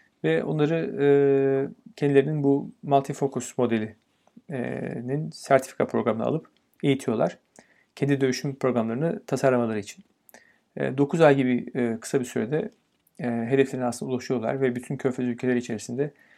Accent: native